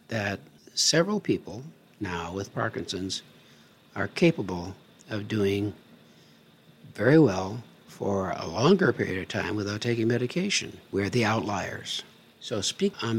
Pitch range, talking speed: 100-135 Hz, 125 wpm